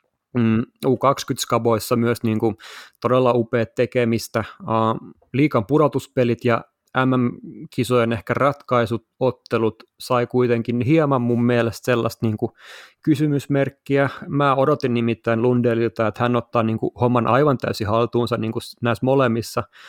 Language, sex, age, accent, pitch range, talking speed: Finnish, male, 30-49, native, 115-135 Hz, 125 wpm